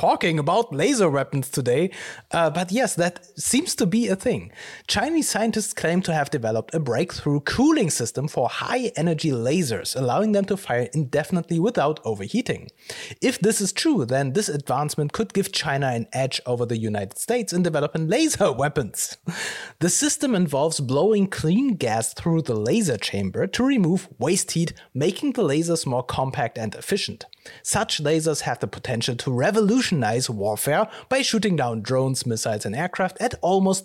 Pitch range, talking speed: 135-190 Hz, 165 wpm